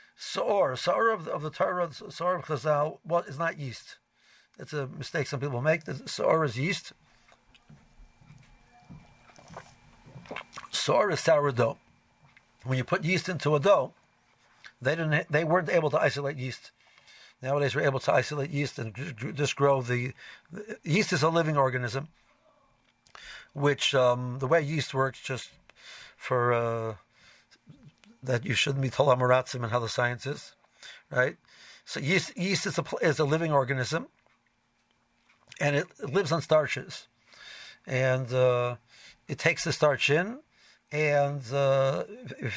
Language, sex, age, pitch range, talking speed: English, male, 60-79, 130-165 Hz, 145 wpm